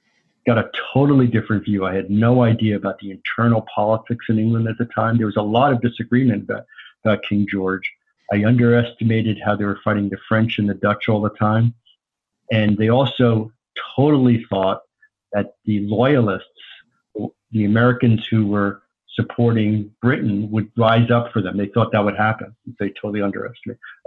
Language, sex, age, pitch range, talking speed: English, male, 50-69, 105-120 Hz, 170 wpm